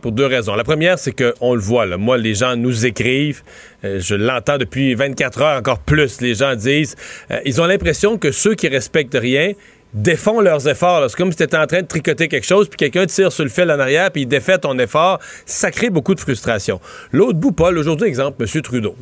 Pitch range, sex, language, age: 140-190 Hz, male, French, 40-59